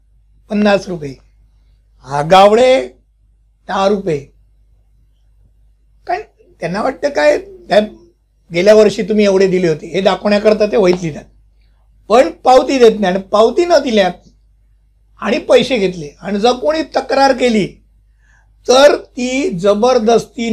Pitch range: 160-230 Hz